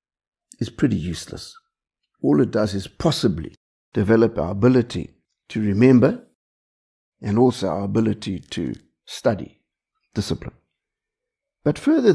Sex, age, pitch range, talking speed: male, 60-79, 110-175 Hz, 110 wpm